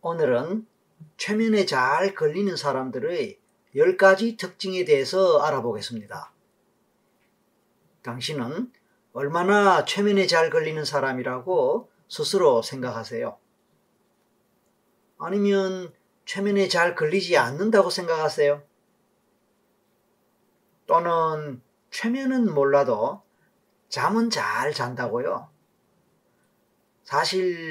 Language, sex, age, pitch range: Korean, male, 40-59, 155-215 Hz